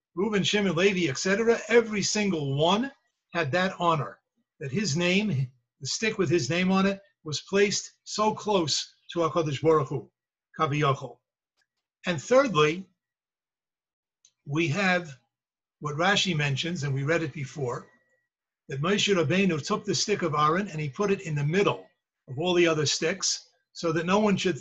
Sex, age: male, 50-69